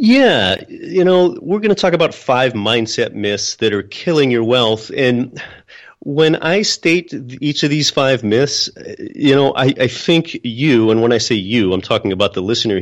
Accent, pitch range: American, 110-155 Hz